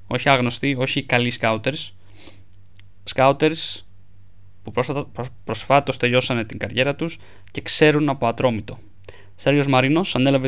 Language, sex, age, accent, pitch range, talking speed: Greek, male, 20-39, Spanish, 100-135 Hz, 115 wpm